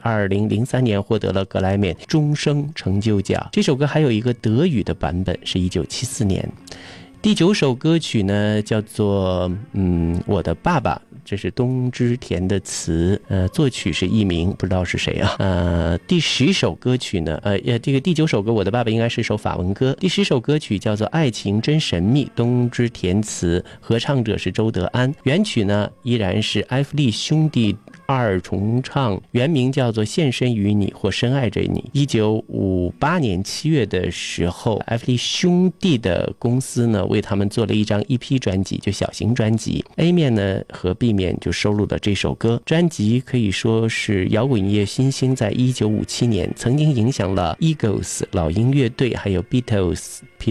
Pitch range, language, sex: 95-130 Hz, Chinese, male